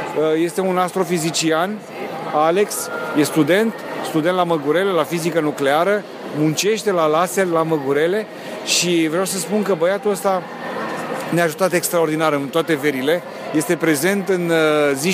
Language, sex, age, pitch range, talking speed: Romanian, male, 40-59, 155-190 Hz, 135 wpm